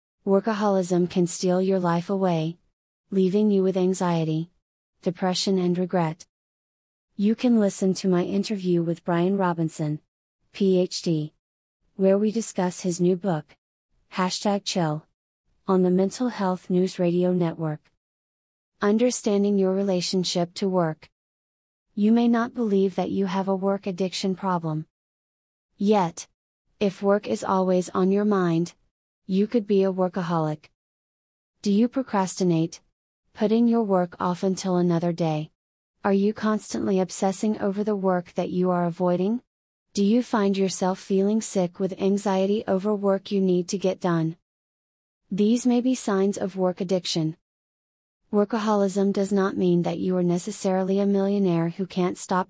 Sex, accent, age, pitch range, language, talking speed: female, American, 30-49, 175-200 Hz, English, 140 wpm